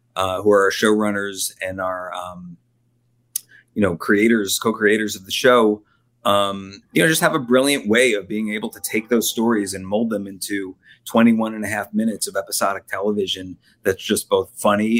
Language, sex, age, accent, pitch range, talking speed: English, male, 30-49, American, 100-115 Hz, 185 wpm